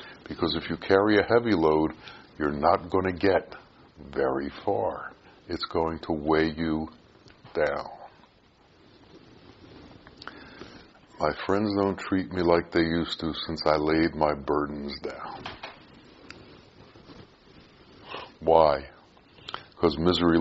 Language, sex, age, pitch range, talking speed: English, female, 60-79, 75-95 Hz, 110 wpm